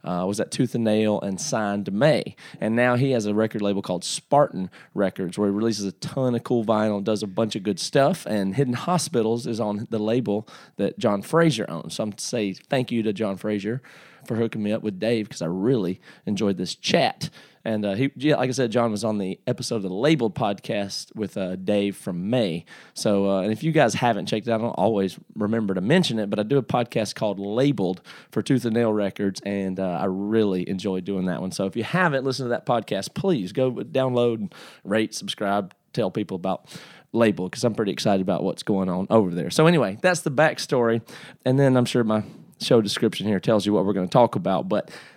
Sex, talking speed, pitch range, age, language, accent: male, 230 wpm, 100-130 Hz, 30-49, English, American